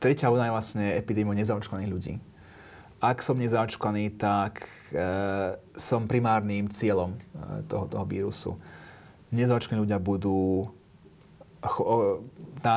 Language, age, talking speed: Slovak, 30-49, 115 wpm